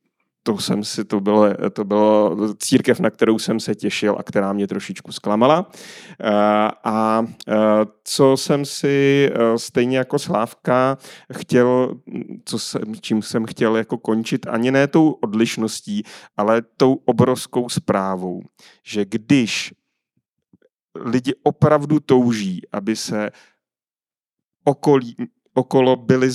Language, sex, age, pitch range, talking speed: Czech, male, 30-49, 110-145 Hz, 120 wpm